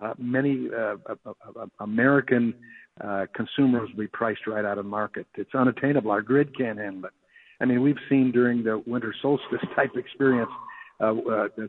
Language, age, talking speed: English, 60-79, 185 wpm